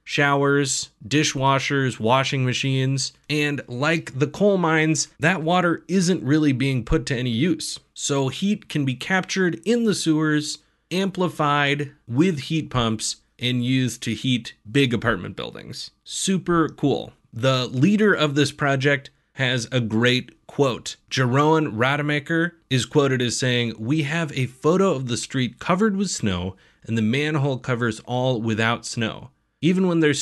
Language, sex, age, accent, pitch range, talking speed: English, male, 30-49, American, 115-155 Hz, 145 wpm